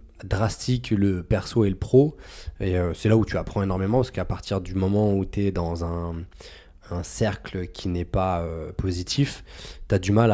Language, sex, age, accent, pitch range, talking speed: French, male, 20-39, French, 85-105 Hz, 205 wpm